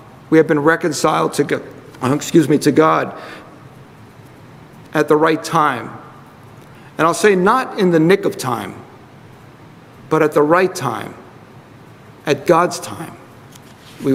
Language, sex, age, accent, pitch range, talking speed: English, male, 50-69, American, 145-190 Hz, 135 wpm